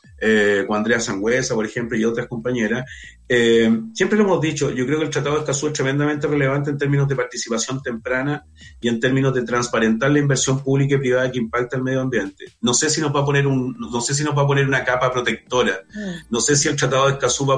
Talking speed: 240 wpm